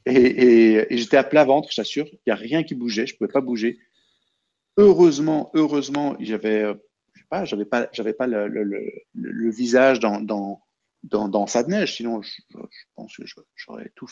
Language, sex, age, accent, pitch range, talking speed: French, male, 50-69, French, 110-150 Hz, 215 wpm